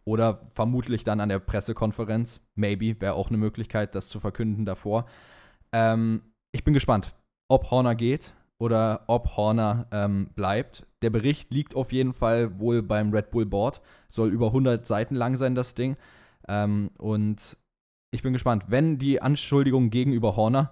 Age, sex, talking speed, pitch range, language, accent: 20-39, male, 160 wpm, 105-130 Hz, German, German